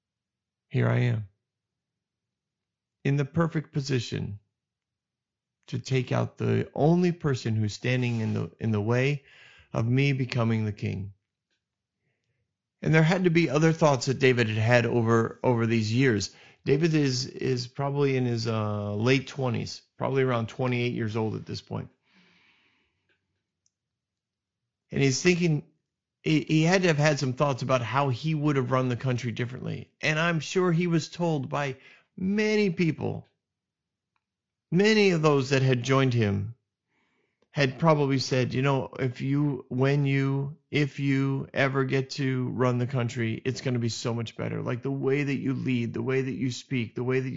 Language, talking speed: English, 165 wpm